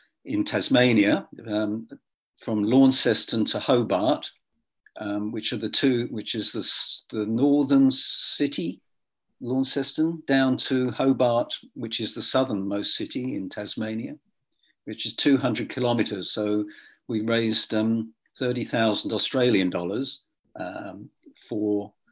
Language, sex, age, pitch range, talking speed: English, male, 50-69, 105-130 Hz, 120 wpm